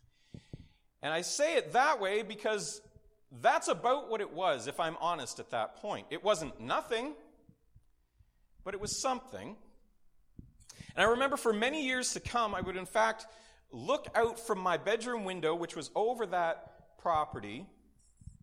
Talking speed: 155 wpm